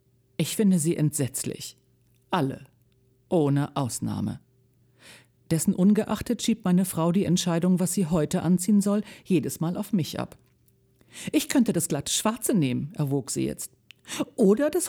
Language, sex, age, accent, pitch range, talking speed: German, female, 50-69, German, 130-210 Hz, 140 wpm